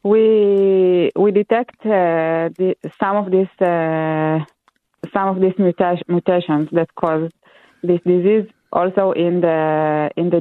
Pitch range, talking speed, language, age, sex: 155-190 Hz, 115 wpm, English, 20-39, female